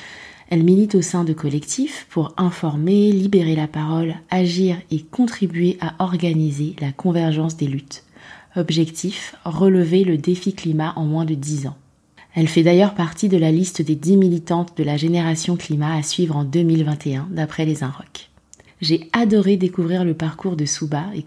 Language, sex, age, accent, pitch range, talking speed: French, female, 20-39, French, 155-185 Hz, 165 wpm